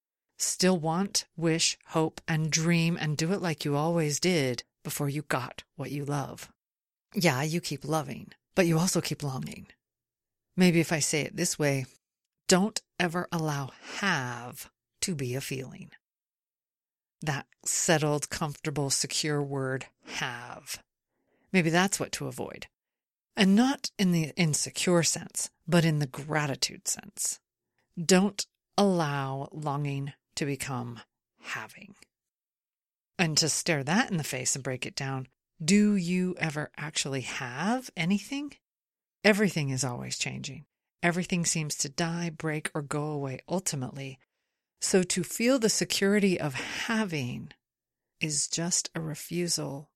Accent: American